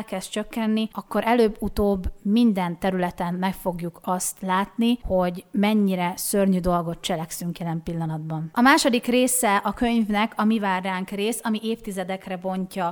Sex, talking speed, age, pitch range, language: female, 140 wpm, 30-49, 185-225 Hz, Hungarian